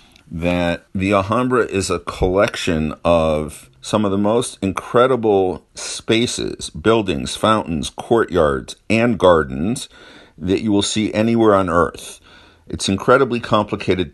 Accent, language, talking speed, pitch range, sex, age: American, English, 120 wpm, 80-95 Hz, male, 50-69